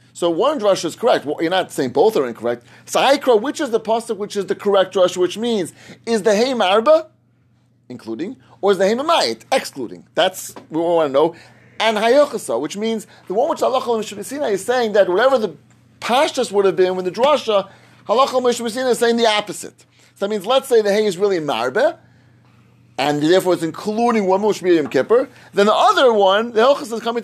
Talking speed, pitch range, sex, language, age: 210 wpm, 145-225 Hz, male, English, 30-49